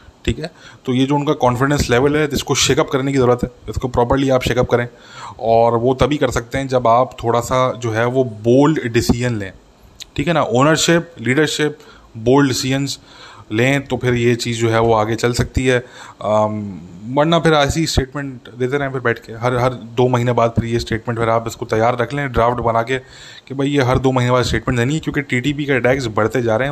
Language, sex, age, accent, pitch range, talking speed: English, male, 20-39, Indian, 115-130 Hz, 145 wpm